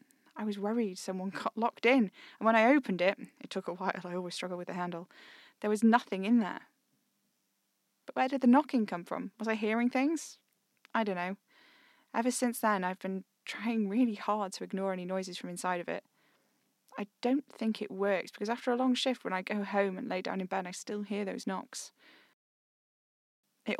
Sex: female